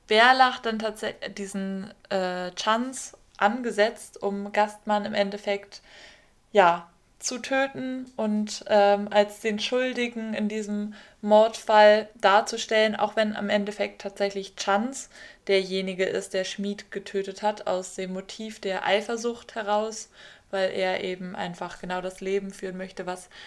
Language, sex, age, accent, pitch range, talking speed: German, female, 20-39, German, 190-220 Hz, 135 wpm